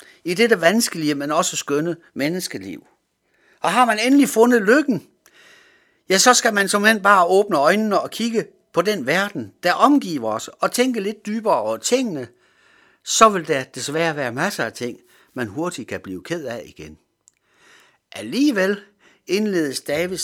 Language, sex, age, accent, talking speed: Danish, male, 60-79, native, 160 wpm